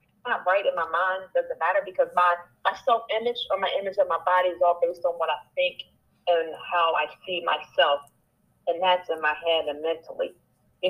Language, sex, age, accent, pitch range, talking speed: English, female, 40-59, American, 170-250 Hz, 210 wpm